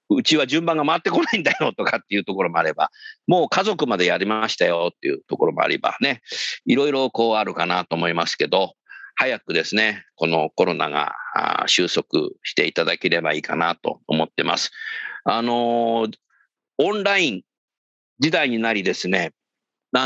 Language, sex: Japanese, male